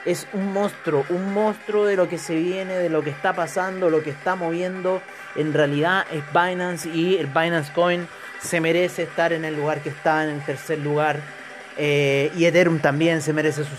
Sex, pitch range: male, 155-180 Hz